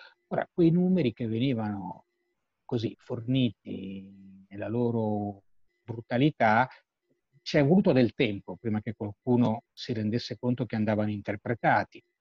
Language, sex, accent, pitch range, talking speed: Italian, male, native, 110-145 Hz, 120 wpm